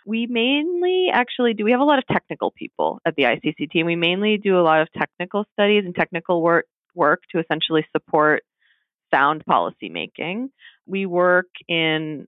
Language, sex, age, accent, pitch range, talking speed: English, female, 30-49, American, 145-185 Hz, 170 wpm